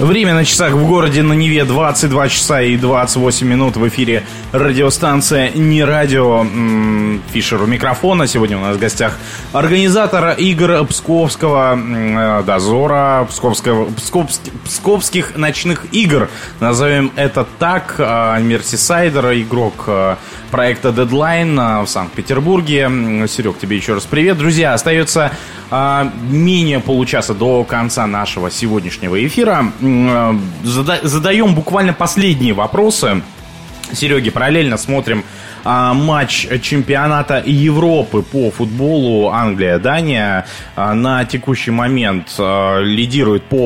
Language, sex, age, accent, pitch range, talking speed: Russian, male, 20-39, native, 115-155 Hz, 105 wpm